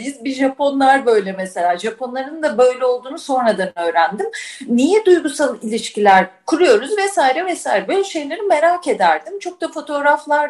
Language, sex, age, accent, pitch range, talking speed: Turkish, female, 40-59, native, 250-395 Hz, 135 wpm